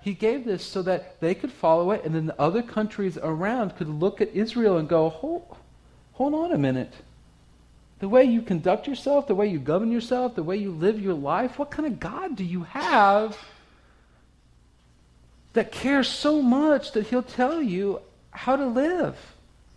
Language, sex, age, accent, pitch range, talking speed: English, male, 40-59, American, 185-265 Hz, 180 wpm